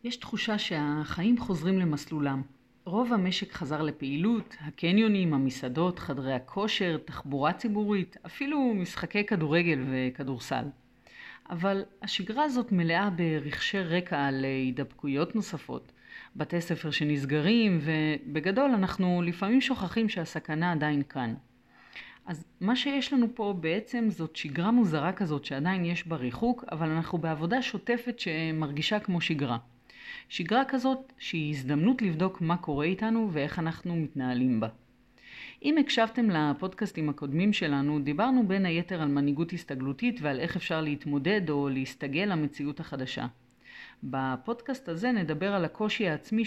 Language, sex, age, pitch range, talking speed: Hebrew, female, 40-59, 145-210 Hz, 125 wpm